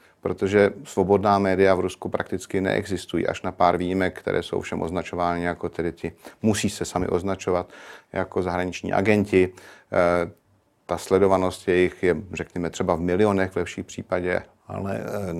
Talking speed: 150 wpm